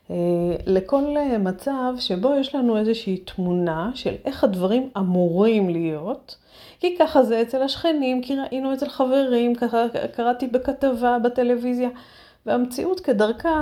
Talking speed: 120 wpm